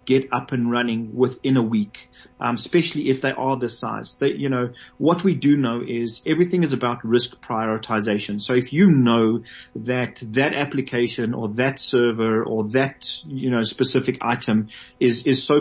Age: 30-49